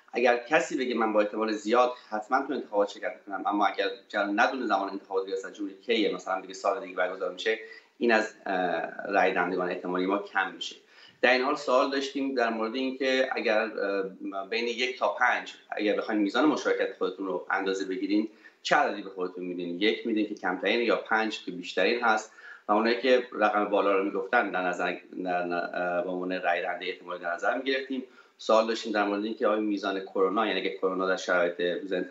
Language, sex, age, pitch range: Persian, male, 30-49, 95-130 Hz